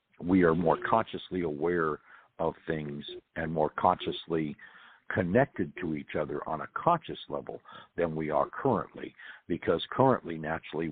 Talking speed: 135 wpm